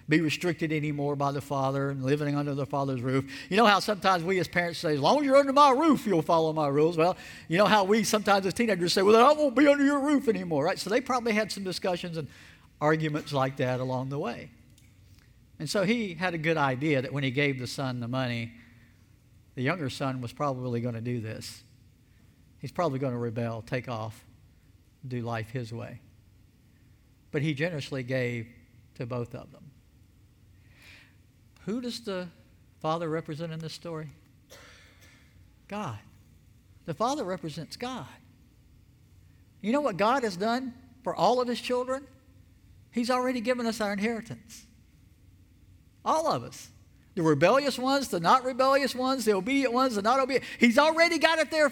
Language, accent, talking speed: English, American, 180 wpm